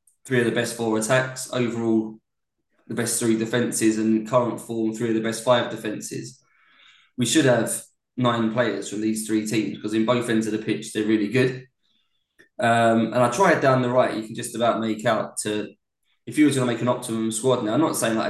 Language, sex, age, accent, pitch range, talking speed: English, male, 20-39, British, 110-120 Hz, 215 wpm